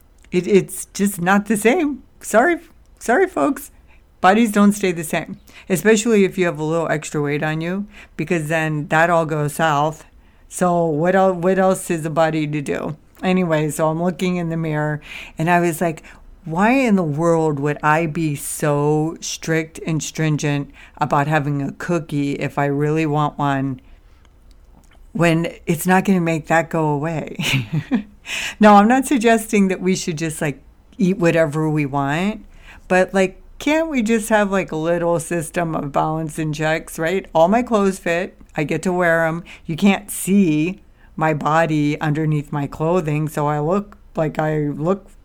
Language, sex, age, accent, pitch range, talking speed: English, female, 60-79, American, 150-185 Hz, 170 wpm